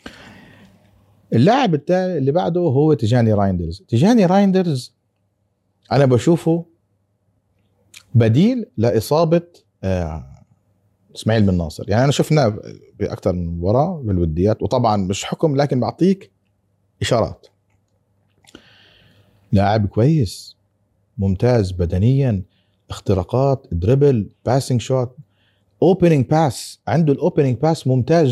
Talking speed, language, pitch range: 90 wpm, Arabic, 100-140 Hz